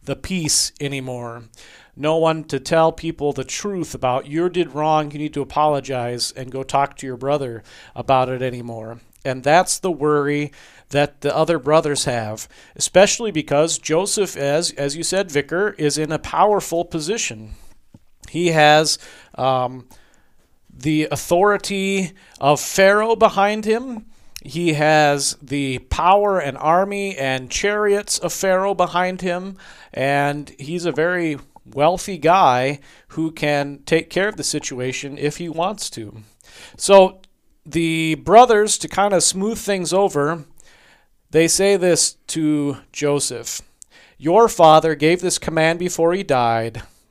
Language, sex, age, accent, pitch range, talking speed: English, male, 40-59, American, 140-180 Hz, 140 wpm